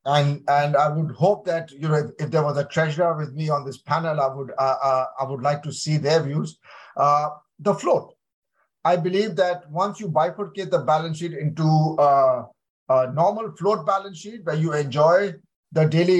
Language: English